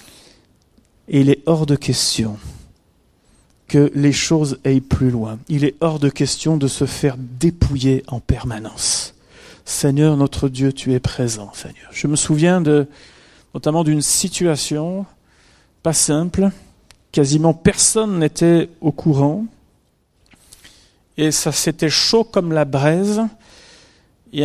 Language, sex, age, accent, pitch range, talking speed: French, male, 40-59, French, 130-165 Hz, 130 wpm